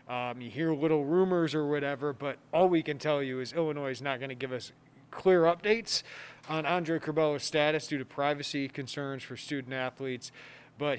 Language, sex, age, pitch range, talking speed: English, male, 30-49, 130-155 Hz, 190 wpm